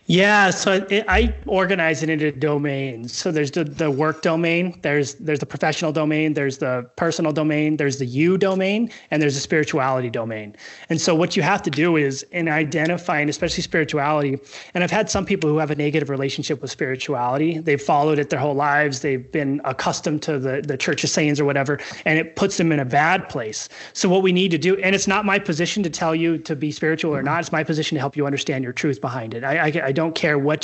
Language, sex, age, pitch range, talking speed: English, male, 30-49, 145-170 Hz, 230 wpm